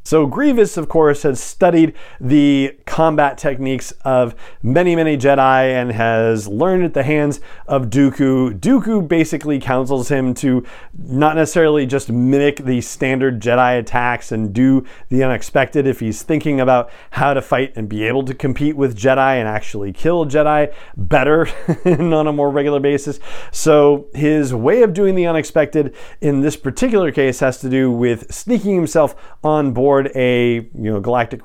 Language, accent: English, American